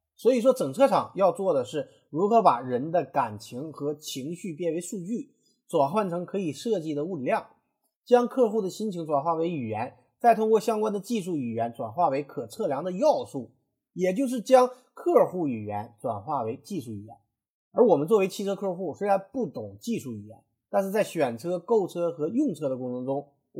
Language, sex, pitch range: Chinese, male, 140-230 Hz